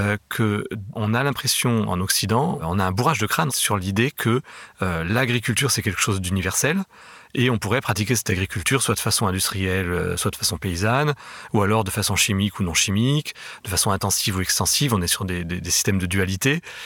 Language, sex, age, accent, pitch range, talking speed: French, male, 30-49, French, 95-120 Hz, 200 wpm